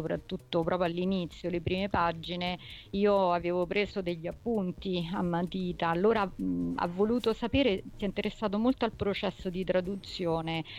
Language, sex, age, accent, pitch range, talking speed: Italian, female, 40-59, native, 170-205 Hz, 145 wpm